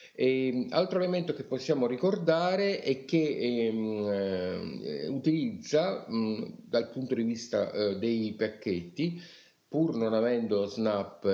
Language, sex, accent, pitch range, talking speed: Italian, male, native, 95-120 Hz, 110 wpm